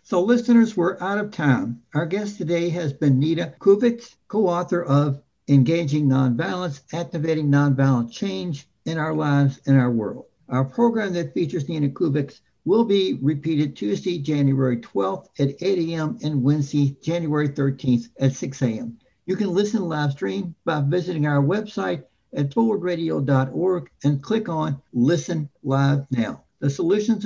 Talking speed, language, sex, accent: 150 wpm, English, male, American